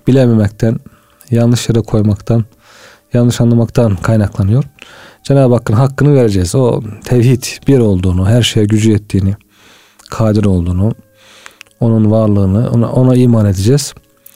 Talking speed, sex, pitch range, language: 115 wpm, male, 105-125 Hz, Turkish